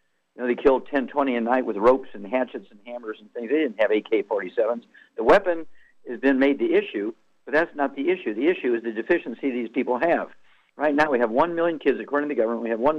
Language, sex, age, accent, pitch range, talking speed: English, male, 50-69, American, 120-150 Hz, 245 wpm